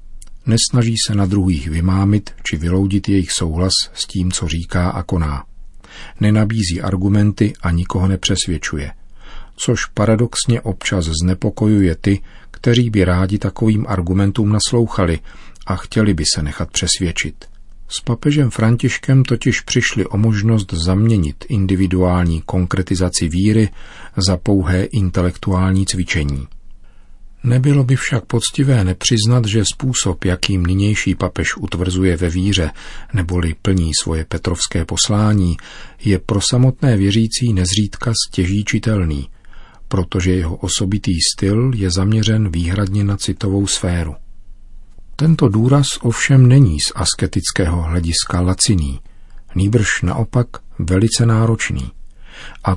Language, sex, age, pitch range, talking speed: Czech, male, 40-59, 90-110 Hz, 115 wpm